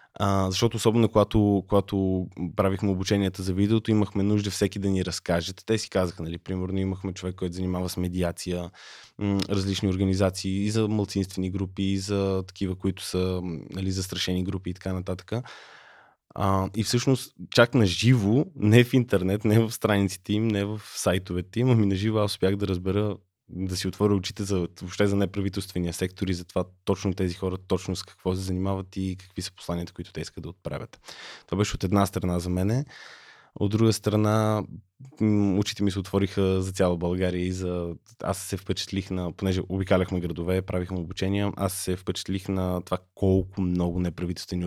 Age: 20-39